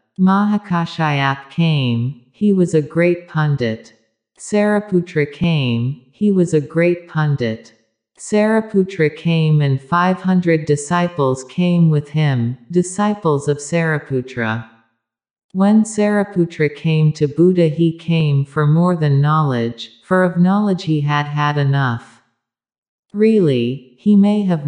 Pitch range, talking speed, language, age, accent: 130-180 Hz, 115 wpm, English, 50-69, American